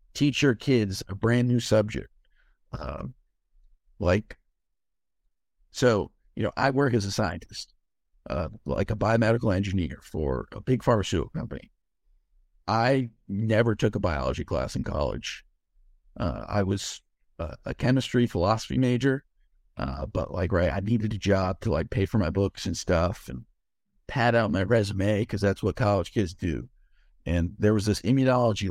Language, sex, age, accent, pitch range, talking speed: English, male, 50-69, American, 85-115 Hz, 155 wpm